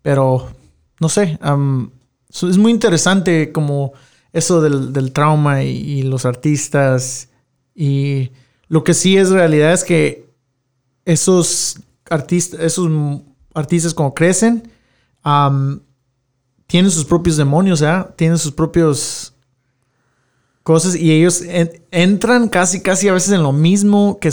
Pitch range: 140-170 Hz